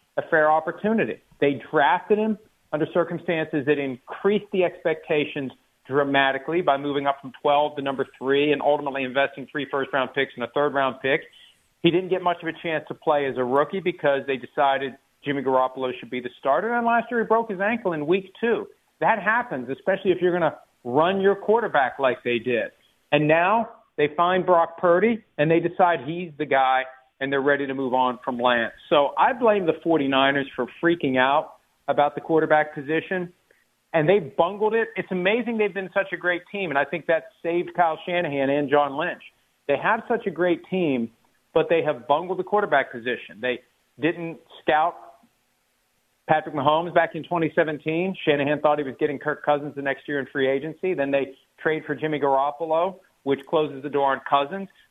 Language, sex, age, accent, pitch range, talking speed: English, male, 50-69, American, 140-180 Hz, 195 wpm